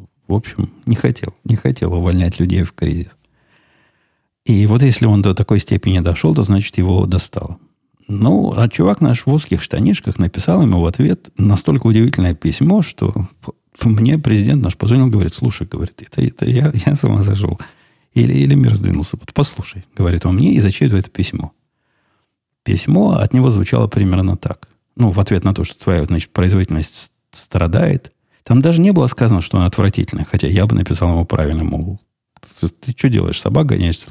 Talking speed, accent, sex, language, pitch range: 175 wpm, native, male, Russian, 90-120 Hz